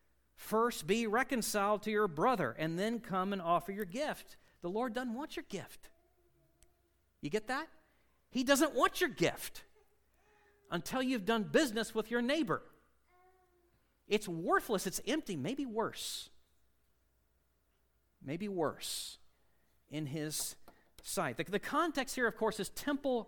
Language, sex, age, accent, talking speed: English, male, 50-69, American, 135 wpm